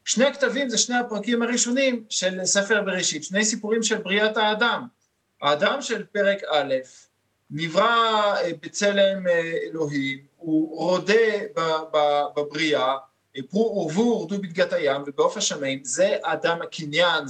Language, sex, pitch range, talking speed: Hebrew, male, 155-225 Hz, 120 wpm